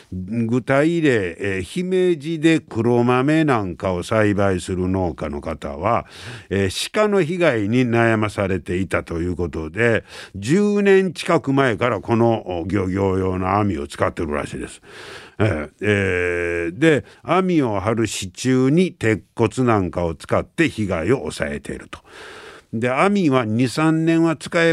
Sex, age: male, 60-79